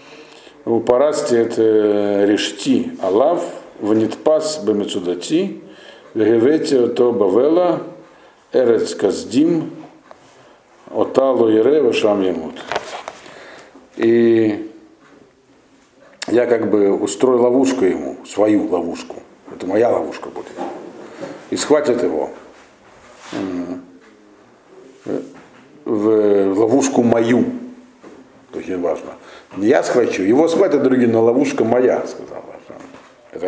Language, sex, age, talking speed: Russian, male, 50-69, 80 wpm